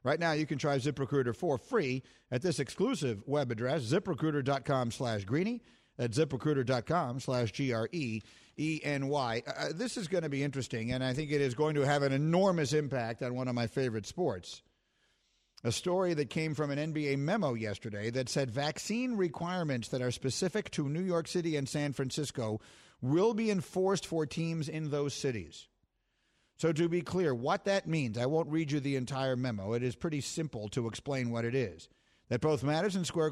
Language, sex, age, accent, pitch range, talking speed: English, male, 50-69, American, 120-155 Hz, 180 wpm